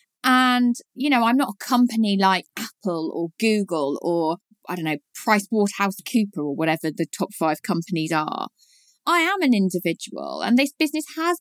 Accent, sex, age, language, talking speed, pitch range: British, female, 20-39, English, 170 wpm, 185-255 Hz